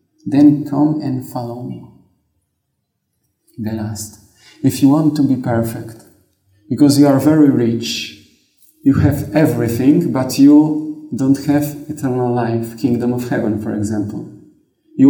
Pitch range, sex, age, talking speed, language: 120-150 Hz, male, 40-59, 130 wpm, English